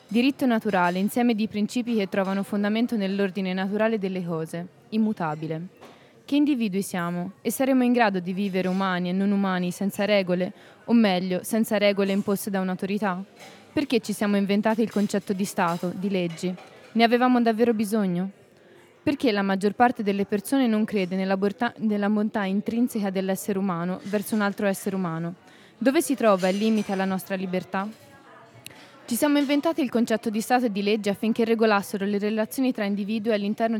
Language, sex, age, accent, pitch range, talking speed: Italian, female, 20-39, native, 190-230 Hz, 165 wpm